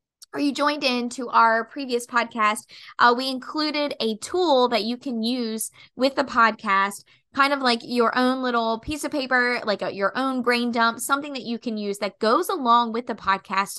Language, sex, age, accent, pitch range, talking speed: English, female, 20-39, American, 215-265 Hz, 200 wpm